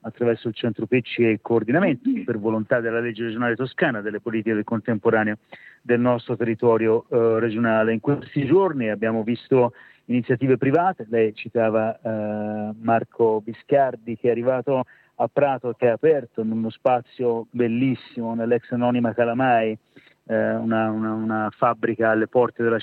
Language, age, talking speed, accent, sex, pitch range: Italian, 40-59, 150 wpm, native, male, 110-125 Hz